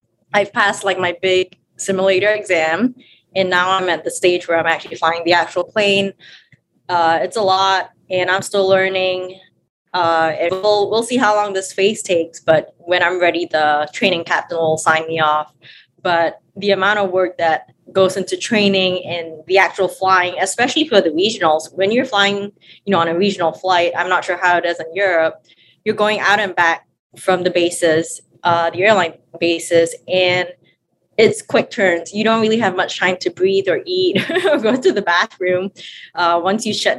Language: English